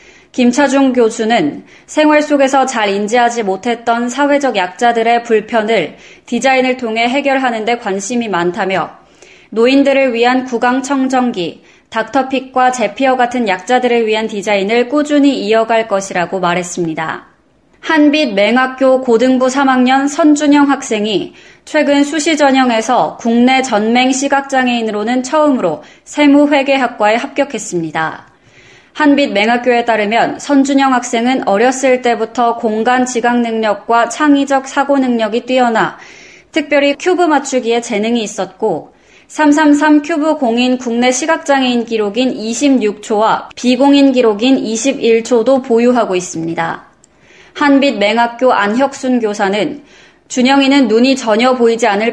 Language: Korean